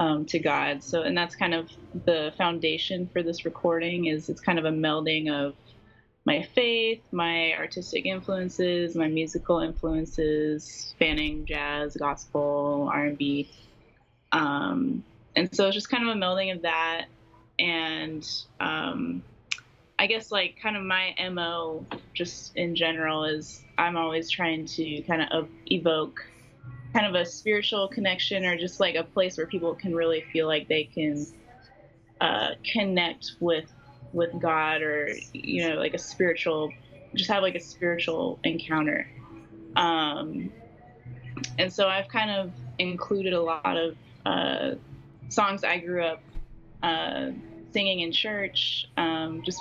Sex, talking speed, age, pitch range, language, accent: female, 140 wpm, 20-39, 145-180 Hz, English, American